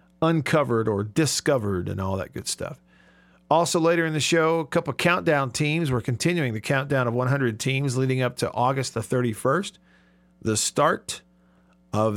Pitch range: 110-160 Hz